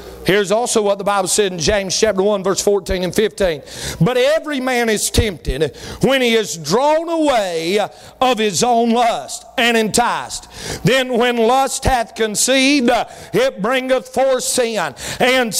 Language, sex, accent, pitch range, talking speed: English, male, American, 180-255 Hz, 155 wpm